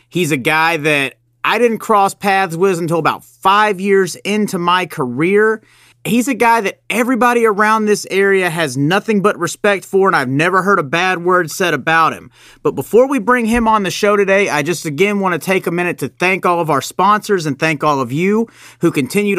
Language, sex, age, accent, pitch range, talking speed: English, male, 30-49, American, 160-210 Hz, 215 wpm